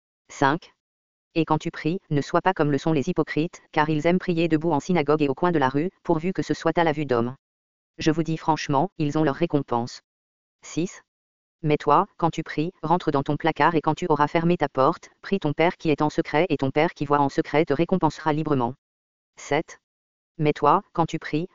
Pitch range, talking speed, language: 130-165 Hz, 230 wpm, English